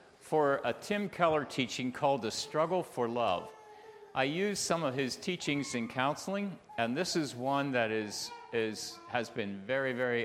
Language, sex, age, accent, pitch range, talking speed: English, male, 50-69, American, 105-135 Hz, 160 wpm